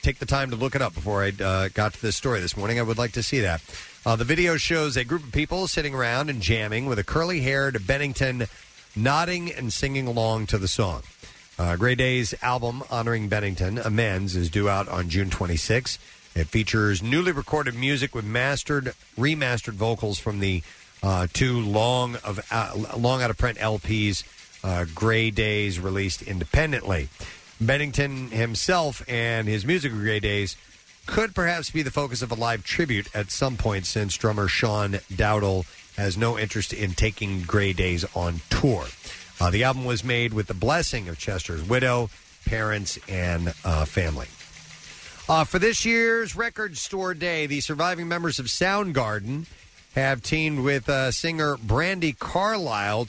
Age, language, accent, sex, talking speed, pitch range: 40-59, English, American, male, 165 wpm, 100-140 Hz